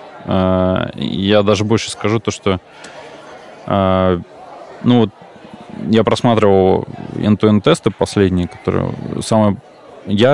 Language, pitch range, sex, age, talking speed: Russian, 95-110 Hz, male, 20-39, 100 wpm